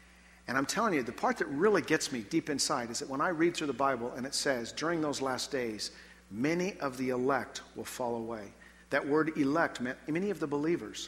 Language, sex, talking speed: English, male, 225 wpm